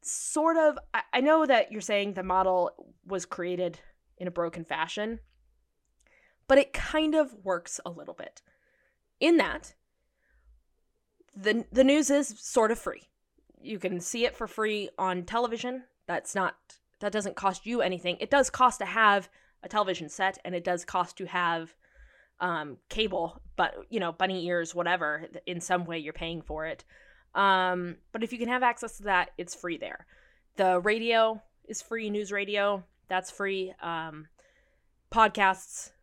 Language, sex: English, female